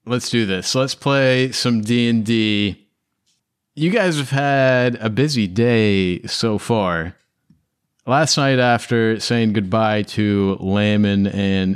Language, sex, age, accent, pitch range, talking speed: English, male, 30-49, American, 100-120 Hz, 120 wpm